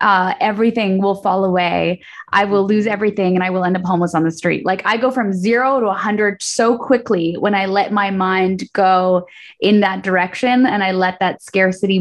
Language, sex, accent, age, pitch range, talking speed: English, female, American, 10-29, 185-240 Hz, 205 wpm